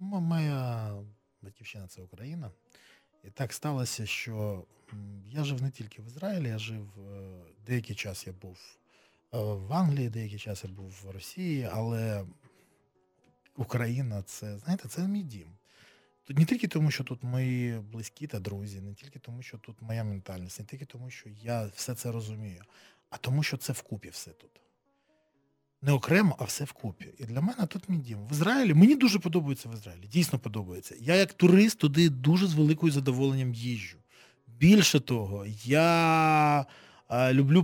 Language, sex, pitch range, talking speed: Ukrainian, male, 110-145 Hz, 165 wpm